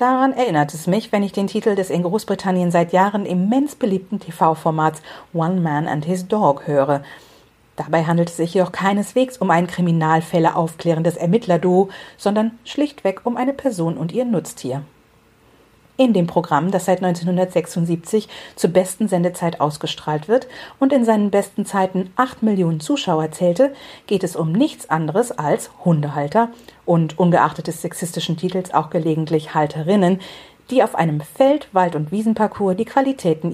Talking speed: 150 wpm